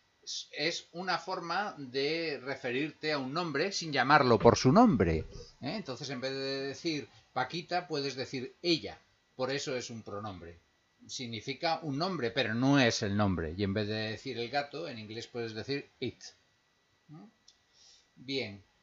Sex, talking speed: male, 155 wpm